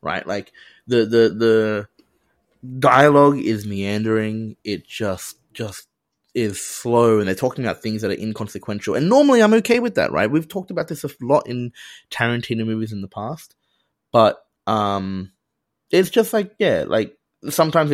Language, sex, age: English, male, 20-39